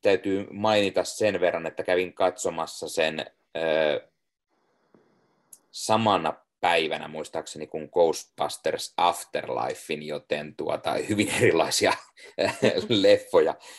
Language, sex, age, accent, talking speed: Finnish, male, 30-49, native, 80 wpm